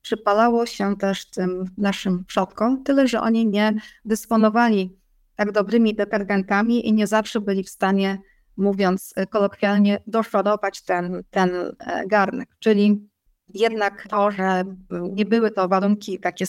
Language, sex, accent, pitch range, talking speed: Polish, female, native, 195-225 Hz, 125 wpm